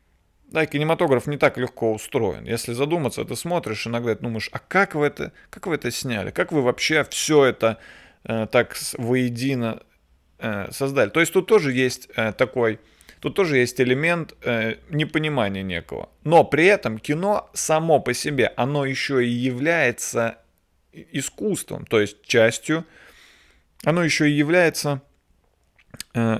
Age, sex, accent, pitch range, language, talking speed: 20-39, male, native, 110-150 Hz, Russian, 150 wpm